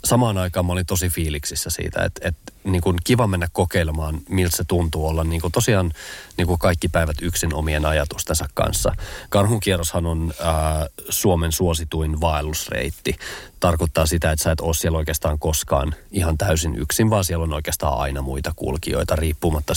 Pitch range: 80-95 Hz